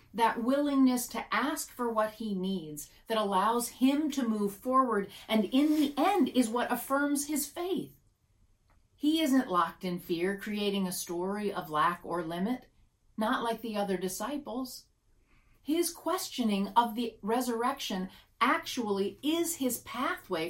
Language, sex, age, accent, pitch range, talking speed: English, female, 40-59, American, 180-255 Hz, 145 wpm